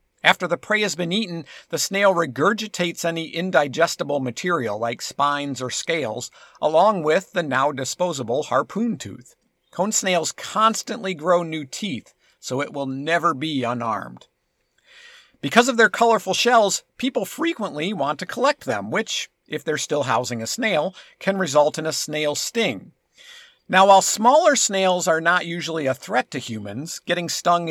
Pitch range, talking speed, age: 145-205 Hz, 150 wpm, 50-69